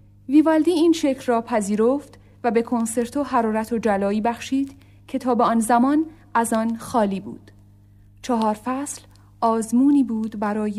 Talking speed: 150 wpm